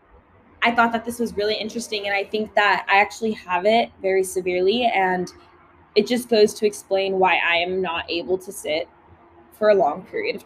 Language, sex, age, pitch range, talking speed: English, female, 10-29, 190-230 Hz, 200 wpm